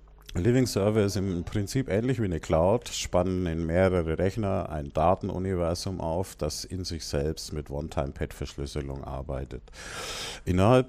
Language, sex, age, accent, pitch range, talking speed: German, male, 50-69, German, 80-105 Hz, 130 wpm